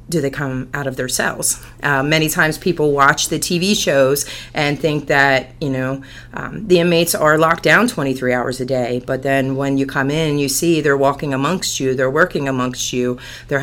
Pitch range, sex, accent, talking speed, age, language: 130-150 Hz, female, American, 205 wpm, 30-49, English